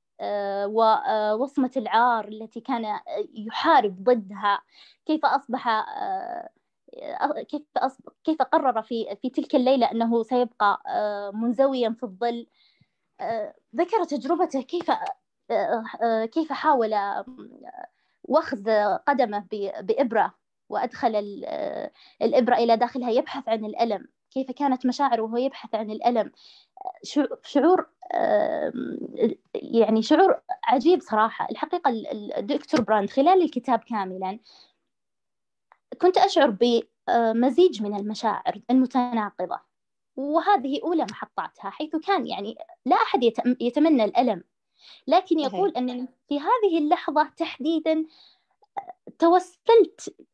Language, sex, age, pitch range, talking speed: Arabic, female, 20-39, 230-325 Hz, 95 wpm